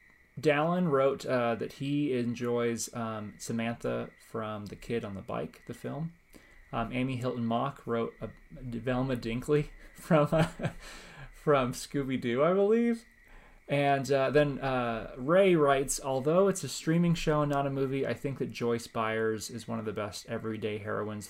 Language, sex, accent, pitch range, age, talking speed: English, male, American, 110-135 Hz, 30-49, 160 wpm